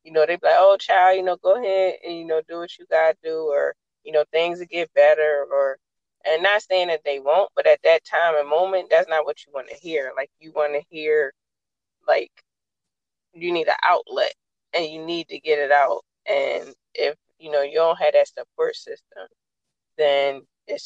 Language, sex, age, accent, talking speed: English, female, 20-39, American, 220 wpm